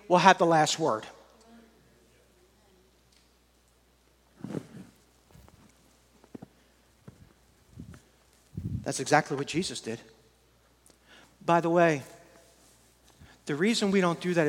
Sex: male